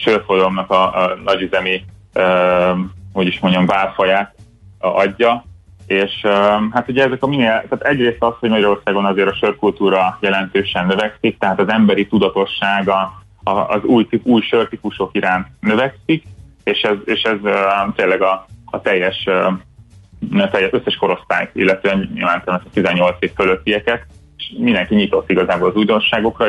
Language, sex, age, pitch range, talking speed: Hungarian, male, 30-49, 95-110 Hz, 145 wpm